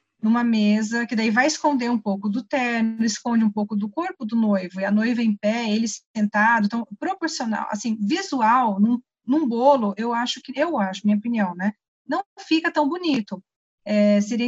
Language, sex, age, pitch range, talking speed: Portuguese, female, 30-49, 210-240 Hz, 180 wpm